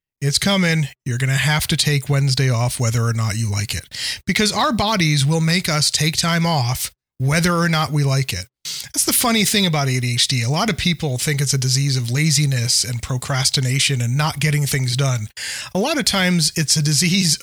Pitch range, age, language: 135-175 Hz, 30-49, English